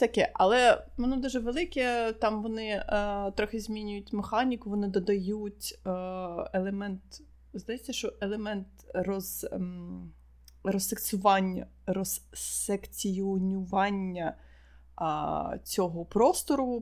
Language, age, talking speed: Ukrainian, 20-39, 80 wpm